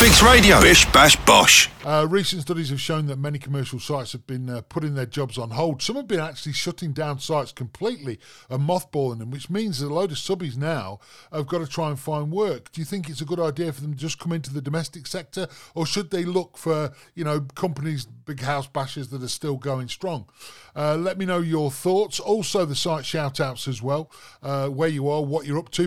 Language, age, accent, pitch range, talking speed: English, 40-59, British, 135-175 Hz, 225 wpm